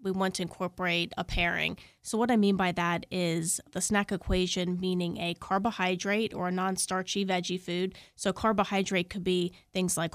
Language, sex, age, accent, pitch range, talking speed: English, female, 30-49, American, 180-195 Hz, 175 wpm